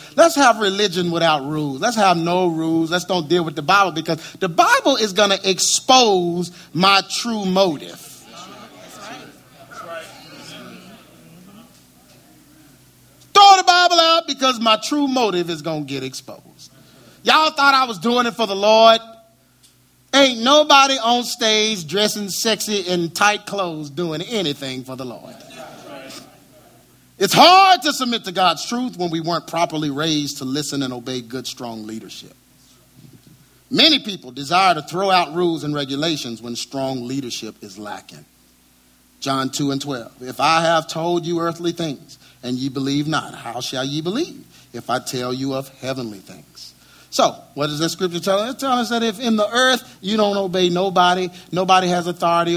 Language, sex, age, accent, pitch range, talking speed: English, male, 30-49, American, 140-215 Hz, 160 wpm